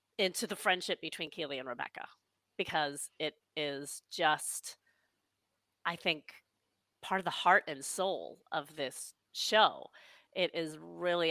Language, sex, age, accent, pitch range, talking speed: English, female, 30-49, American, 155-220 Hz, 135 wpm